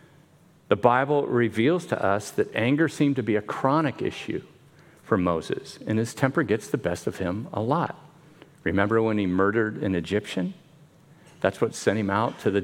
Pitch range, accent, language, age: 115-165 Hz, American, English, 50-69